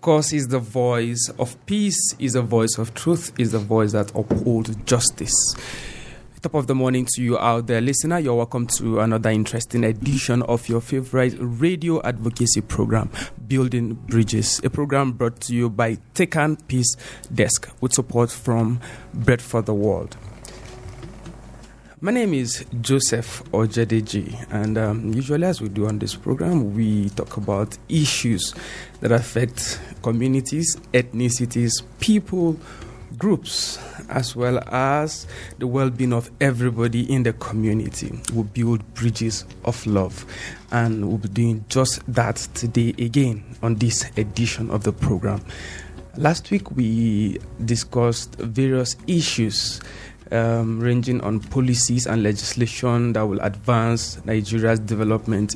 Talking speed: 135 wpm